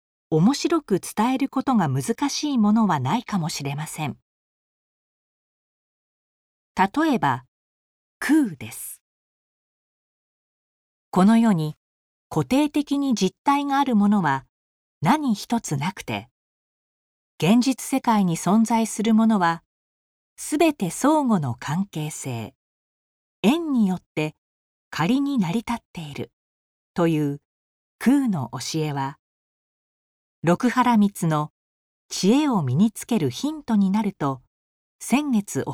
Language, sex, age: Japanese, female, 40-59